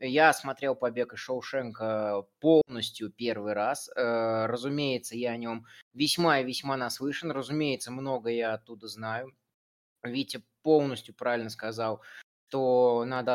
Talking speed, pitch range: 120 wpm, 120-145 Hz